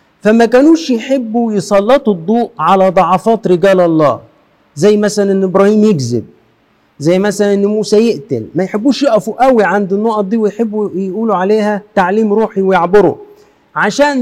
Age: 50-69